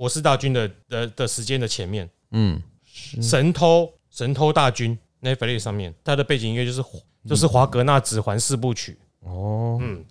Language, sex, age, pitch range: Chinese, male, 30-49, 115-165 Hz